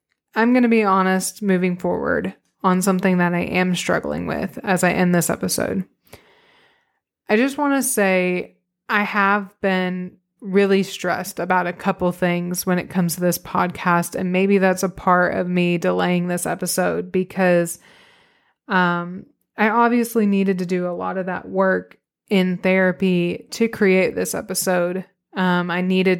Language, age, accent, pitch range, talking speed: English, 20-39, American, 180-205 Hz, 160 wpm